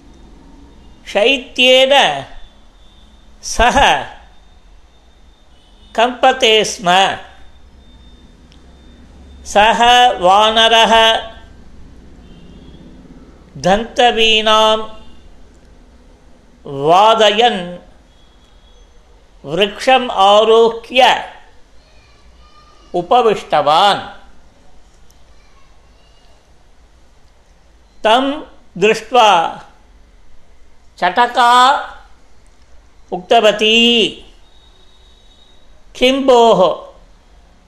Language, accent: Tamil, native